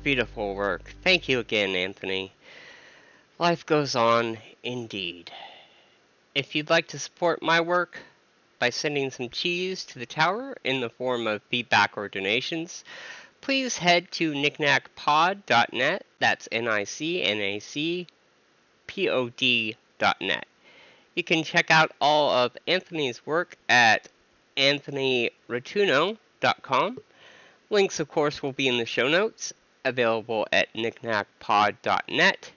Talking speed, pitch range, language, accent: 125 wpm, 115-165 Hz, English, American